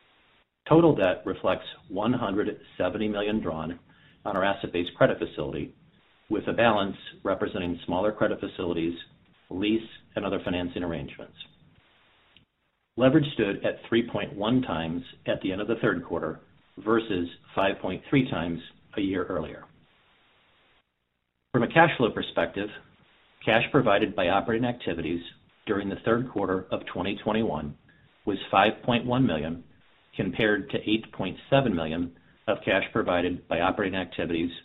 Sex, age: male, 50-69